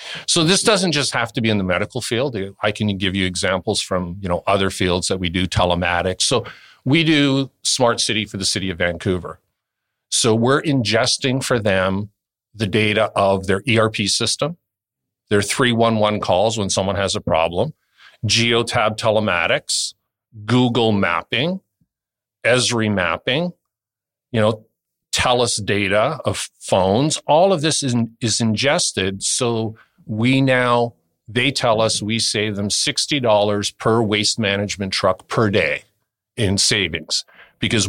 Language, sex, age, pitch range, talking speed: English, male, 50-69, 100-120 Hz, 145 wpm